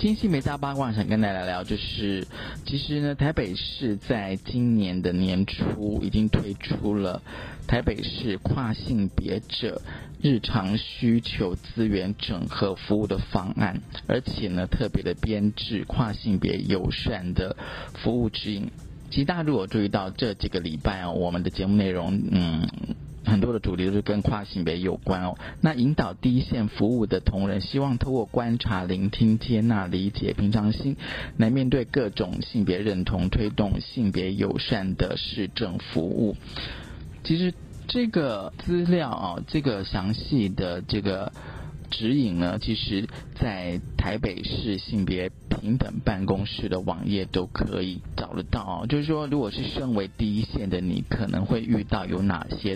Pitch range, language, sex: 95-120 Hz, Chinese, male